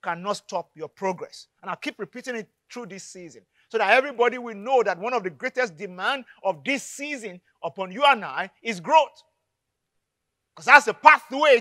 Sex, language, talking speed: male, English, 185 wpm